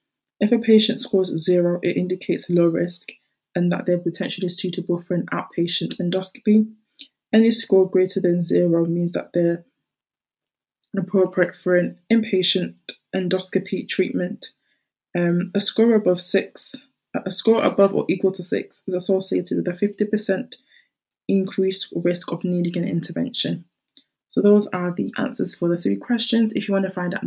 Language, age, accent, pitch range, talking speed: English, 20-39, British, 175-205 Hz, 155 wpm